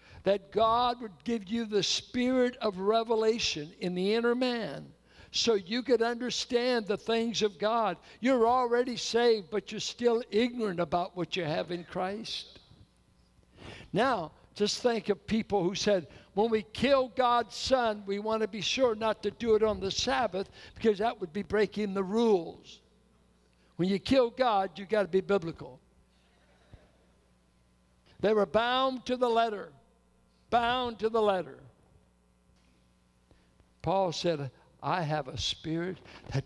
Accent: American